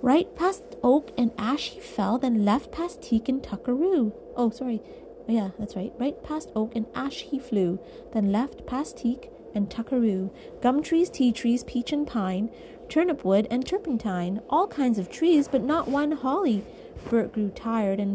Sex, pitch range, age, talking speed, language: female, 215-275 Hz, 30-49, 180 wpm, English